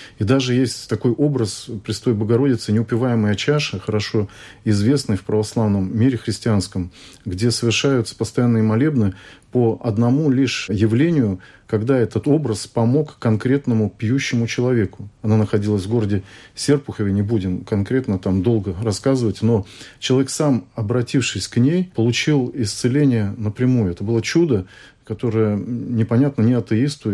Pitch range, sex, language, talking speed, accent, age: 105-130 Hz, male, Russian, 125 wpm, native, 40-59